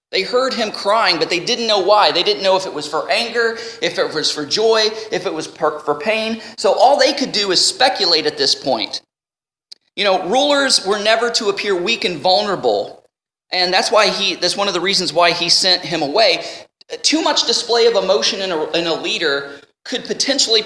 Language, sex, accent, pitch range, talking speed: English, male, American, 165-225 Hz, 205 wpm